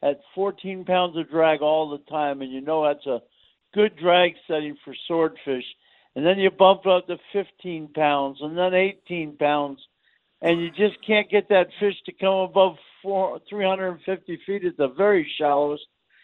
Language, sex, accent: English, male, American